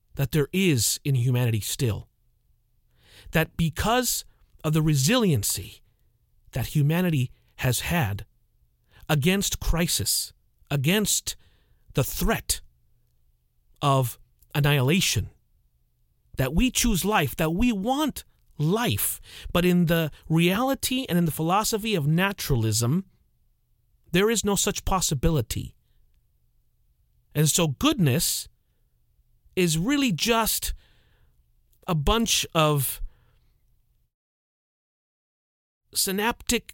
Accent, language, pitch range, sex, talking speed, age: American, English, 115-175 Hz, male, 90 wpm, 40-59